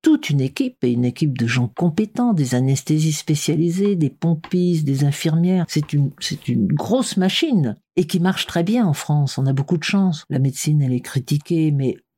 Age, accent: 50-69, French